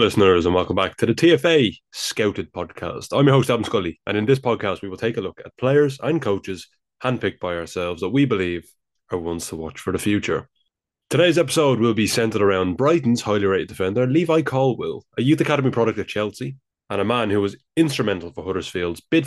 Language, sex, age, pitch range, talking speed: English, male, 20-39, 90-130 Hz, 210 wpm